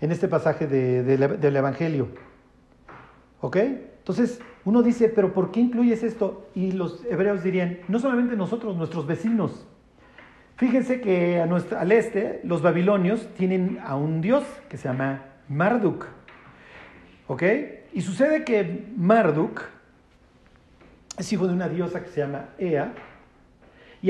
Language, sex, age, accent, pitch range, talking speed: Spanish, male, 50-69, Mexican, 160-225 Hz, 130 wpm